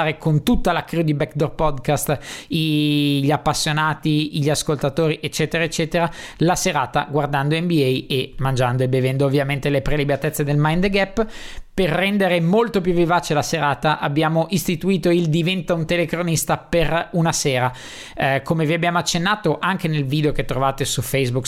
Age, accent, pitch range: 20-39, native, 145-175 Hz